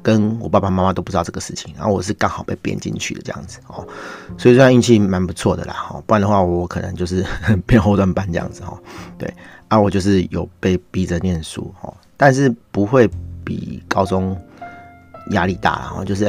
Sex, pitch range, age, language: male, 90-105 Hz, 30-49, Chinese